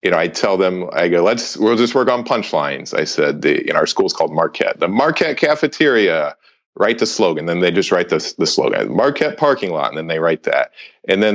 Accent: American